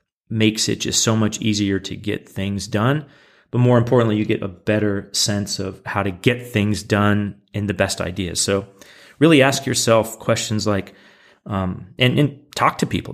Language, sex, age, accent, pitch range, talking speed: English, male, 30-49, American, 95-110 Hz, 185 wpm